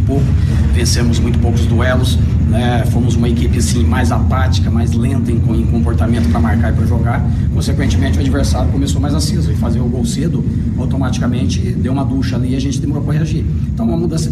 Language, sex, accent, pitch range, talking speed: Portuguese, male, Brazilian, 105-120 Hz, 195 wpm